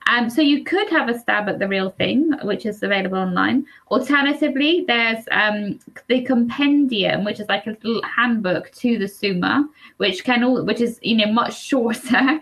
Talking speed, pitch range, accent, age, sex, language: 185 wpm, 210-265 Hz, British, 20-39, female, English